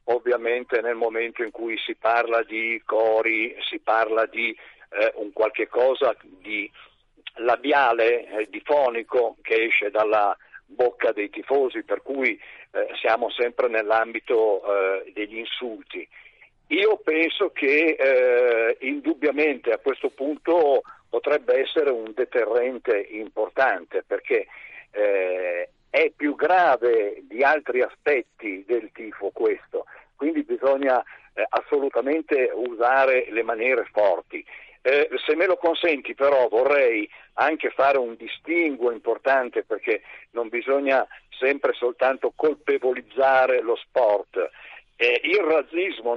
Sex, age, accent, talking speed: male, 50-69, native, 115 wpm